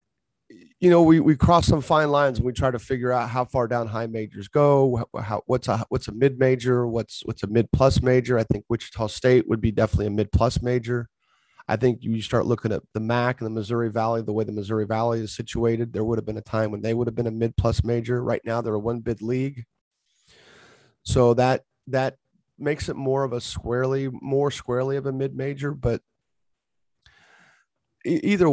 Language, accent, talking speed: English, American, 215 wpm